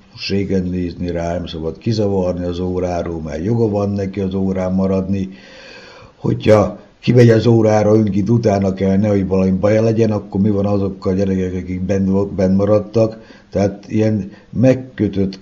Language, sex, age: Hungarian, male, 60-79